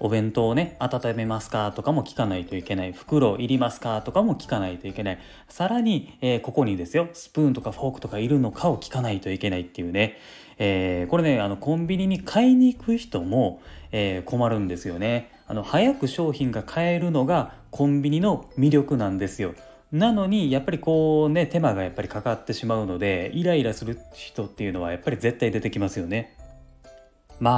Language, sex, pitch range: Japanese, male, 95-140 Hz